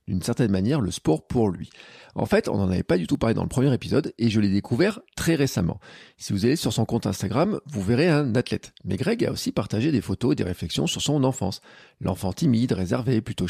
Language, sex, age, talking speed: French, male, 40-59, 240 wpm